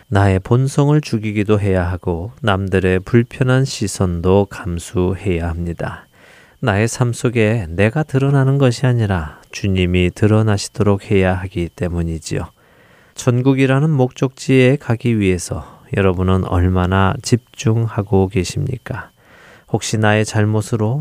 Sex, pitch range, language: male, 95-130 Hz, Korean